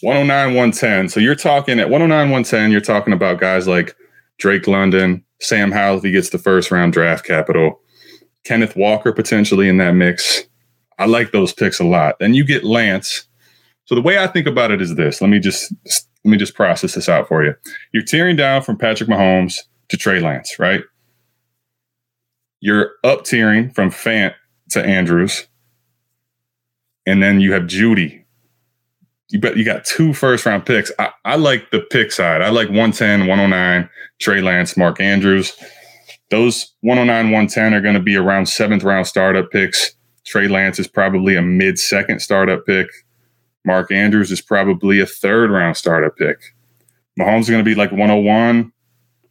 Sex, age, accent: male, 20-39, American